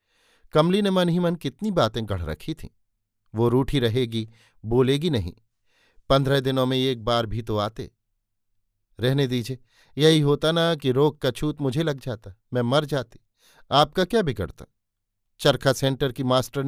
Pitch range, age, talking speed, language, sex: 105-145 Hz, 50-69, 165 wpm, Hindi, male